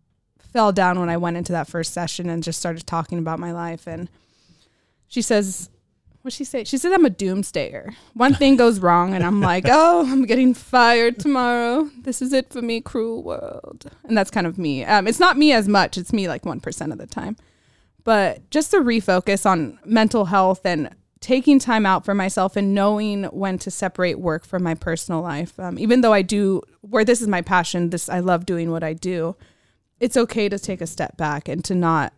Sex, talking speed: female, 215 wpm